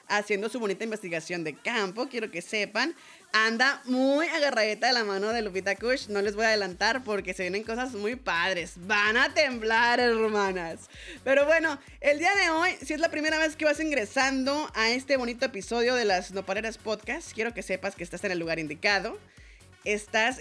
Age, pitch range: 20-39, 195-270 Hz